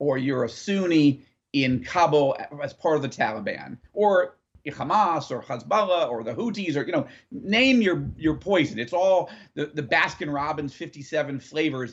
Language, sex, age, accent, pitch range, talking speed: English, male, 40-59, American, 140-200 Hz, 165 wpm